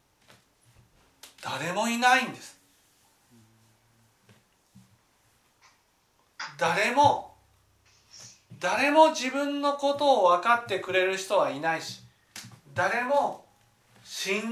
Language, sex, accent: Japanese, male, native